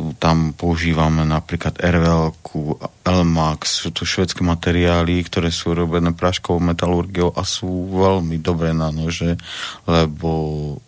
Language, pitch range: Slovak, 80-85 Hz